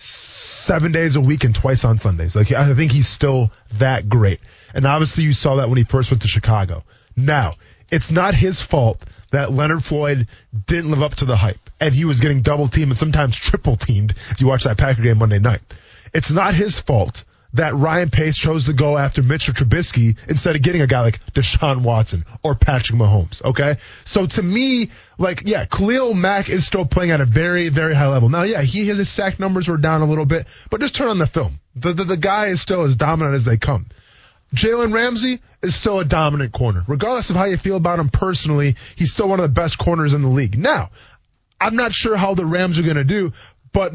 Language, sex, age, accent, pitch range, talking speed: English, male, 20-39, American, 120-175 Hz, 225 wpm